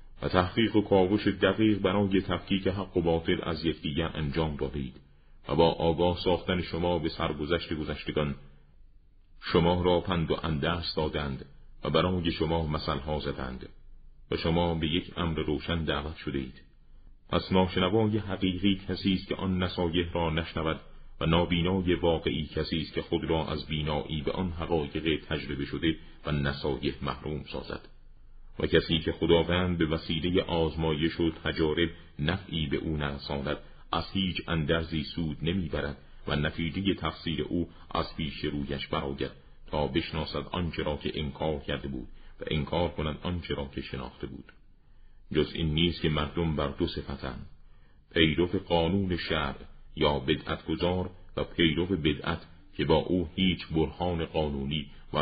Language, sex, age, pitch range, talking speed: Persian, male, 40-59, 75-90 Hz, 150 wpm